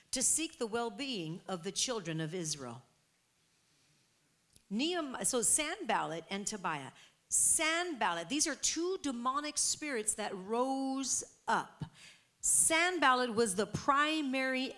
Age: 50-69